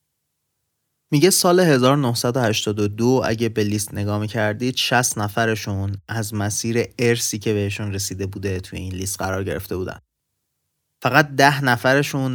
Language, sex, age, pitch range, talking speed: Persian, male, 30-49, 105-120 Hz, 125 wpm